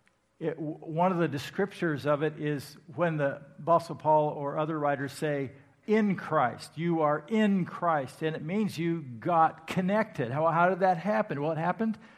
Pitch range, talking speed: 145-185 Hz, 170 wpm